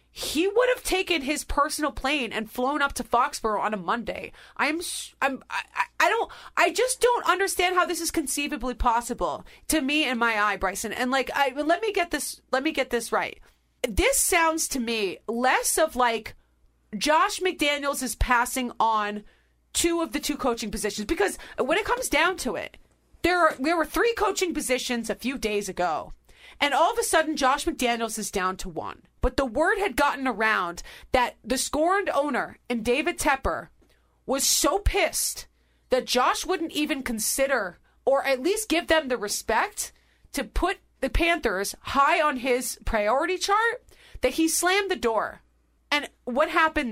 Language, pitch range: English, 240-335 Hz